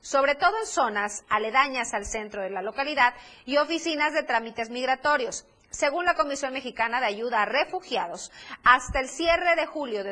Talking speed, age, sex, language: 170 wpm, 30-49, female, Spanish